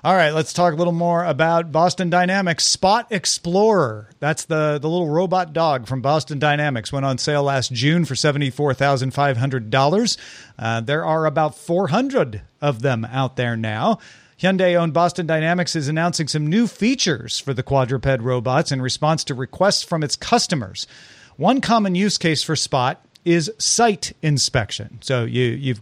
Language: English